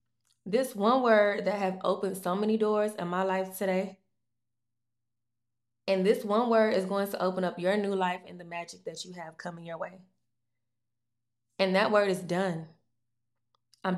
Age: 20-39